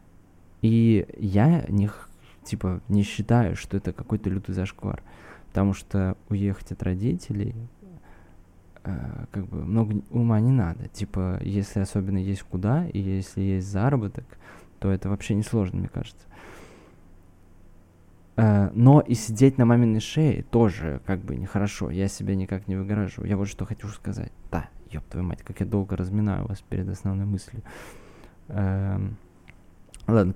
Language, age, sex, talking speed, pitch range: Russian, 20-39, male, 145 wpm, 95-115 Hz